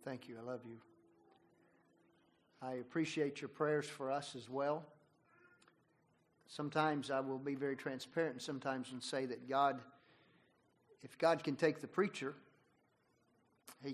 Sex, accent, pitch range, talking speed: male, American, 125-155 Hz, 140 wpm